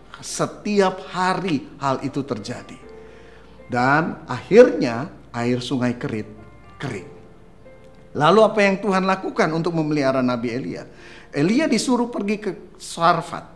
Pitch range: 130-185 Hz